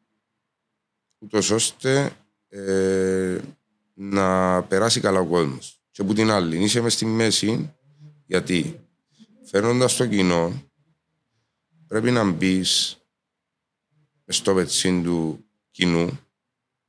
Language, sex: Greek, male